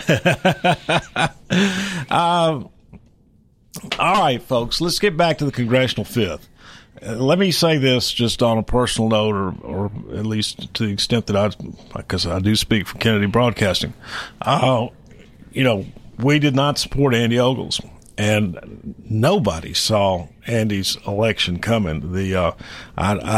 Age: 50-69